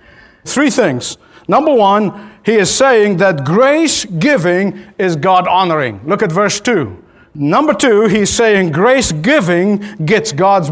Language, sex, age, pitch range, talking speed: English, male, 50-69, 170-240 Hz, 125 wpm